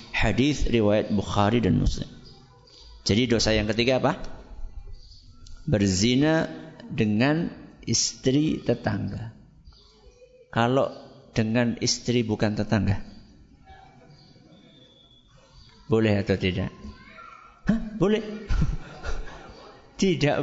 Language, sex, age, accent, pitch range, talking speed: Indonesian, male, 50-69, native, 110-145 Hz, 75 wpm